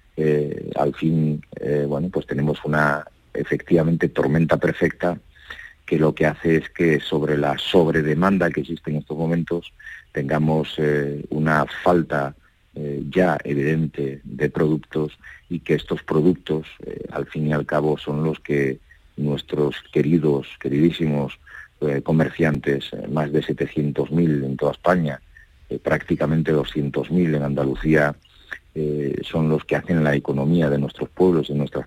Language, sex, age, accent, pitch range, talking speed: Spanish, male, 50-69, Spanish, 70-80 Hz, 145 wpm